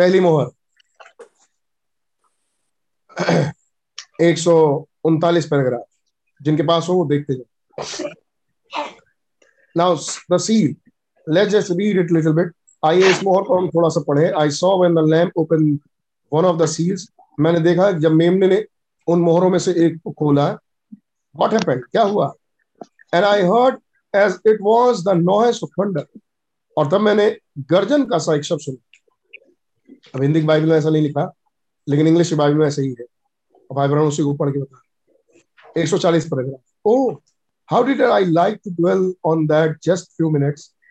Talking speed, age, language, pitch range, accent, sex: 85 wpm, 50-69, Hindi, 155-195 Hz, native, male